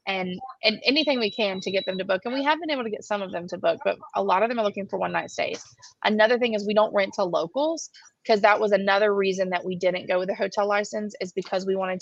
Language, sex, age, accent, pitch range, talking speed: English, female, 20-39, American, 185-210 Hz, 290 wpm